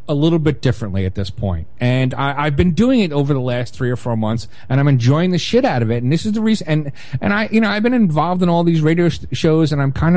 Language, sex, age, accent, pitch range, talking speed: English, male, 30-49, American, 130-190 Hz, 295 wpm